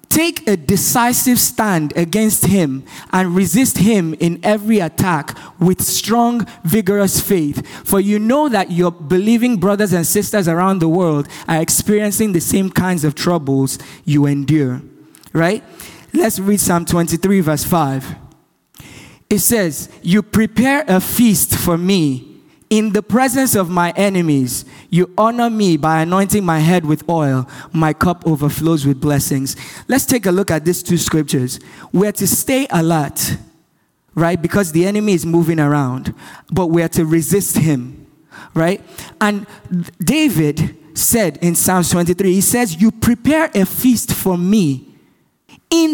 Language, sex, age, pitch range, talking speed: English, male, 20-39, 165-215 Hz, 150 wpm